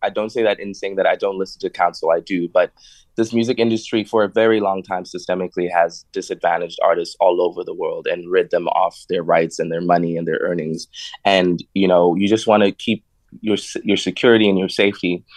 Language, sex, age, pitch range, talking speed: English, male, 20-39, 90-110 Hz, 225 wpm